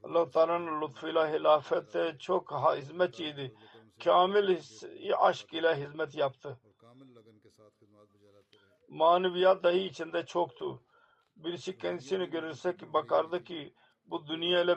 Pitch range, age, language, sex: 140-175 Hz, 50-69, Turkish, male